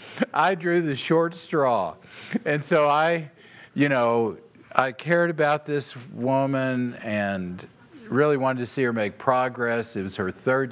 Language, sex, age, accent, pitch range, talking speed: English, male, 50-69, American, 115-150 Hz, 150 wpm